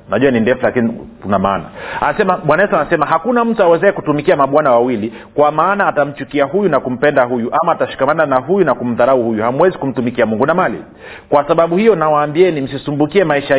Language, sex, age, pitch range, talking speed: Swahili, male, 40-59, 140-190 Hz, 175 wpm